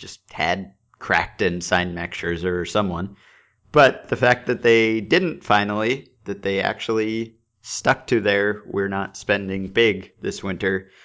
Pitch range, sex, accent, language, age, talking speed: 90-120 Hz, male, American, English, 40-59, 150 wpm